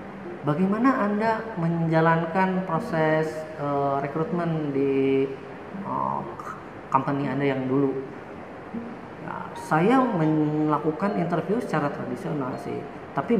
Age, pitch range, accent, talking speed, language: 30-49, 145-190 Hz, native, 90 wpm, Indonesian